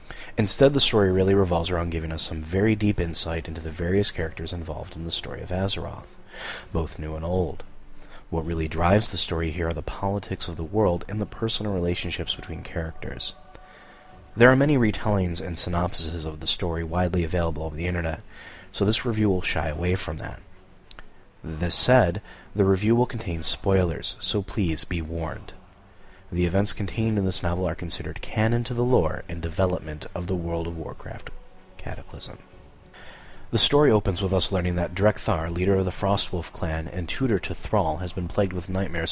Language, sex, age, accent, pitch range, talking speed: English, male, 30-49, American, 85-100 Hz, 185 wpm